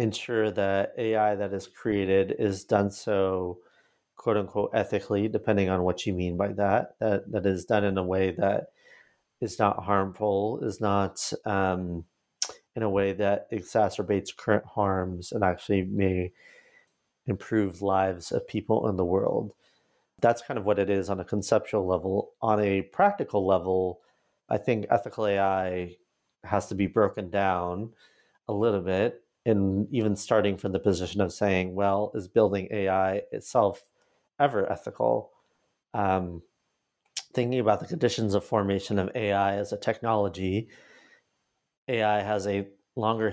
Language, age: English, 30-49